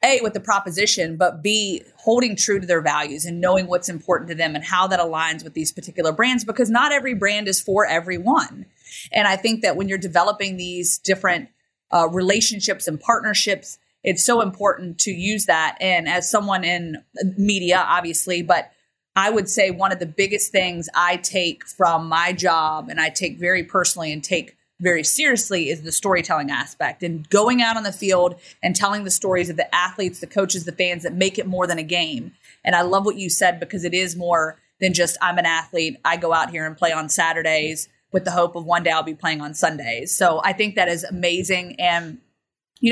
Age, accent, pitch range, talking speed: 30-49, American, 175-200 Hz, 210 wpm